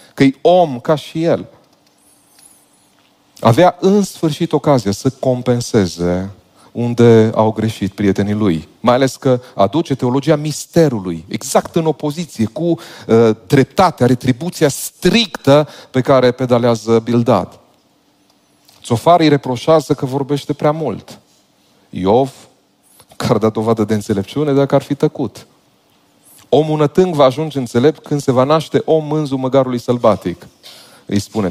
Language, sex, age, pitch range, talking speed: Romanian, male, 40-59, 115-150 Hz, 125 wpm